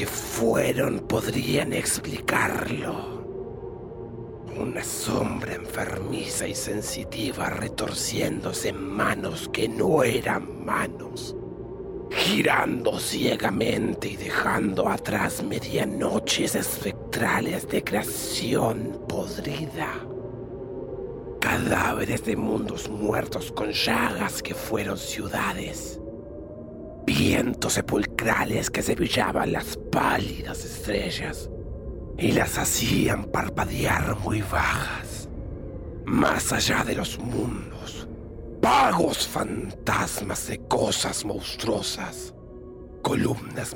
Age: 50-69